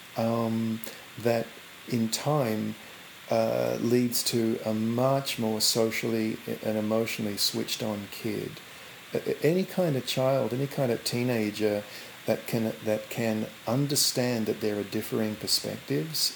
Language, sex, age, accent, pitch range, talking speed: English, male, 40-59, Australian, 105-125 Hz, 125 wpm